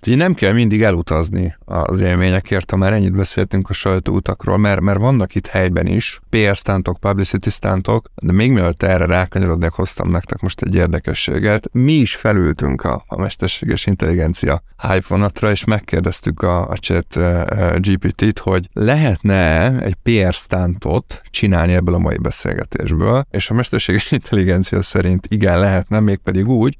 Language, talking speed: Hungarian, 150 wpm